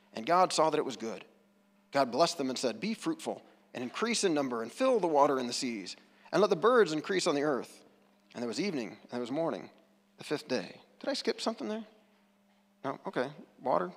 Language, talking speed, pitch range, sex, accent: English, 225 wpm, 145-200 Hz, male, American